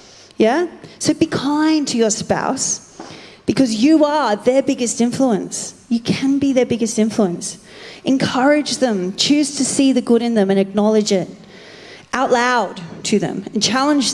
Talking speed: 155 wpm